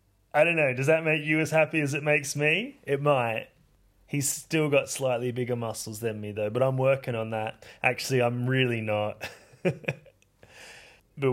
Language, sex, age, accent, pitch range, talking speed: English, male, 20-39, Australian, 115-155 Hz, 180 wpm